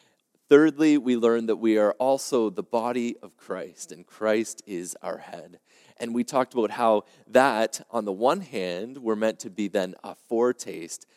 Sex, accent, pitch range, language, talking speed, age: male, American, 100-130 Hz, English, 175 wpm, 30-49